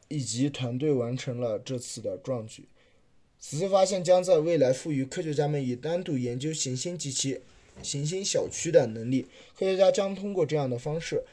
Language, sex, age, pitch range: Chinese, male, 20-39, 125-165 Hz